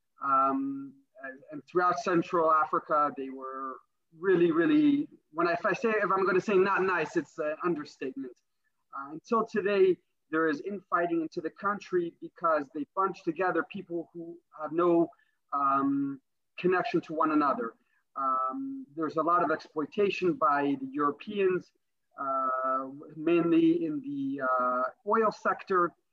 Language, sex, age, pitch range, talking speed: English, male, 30-49, 155-200 Hz, 140 wpm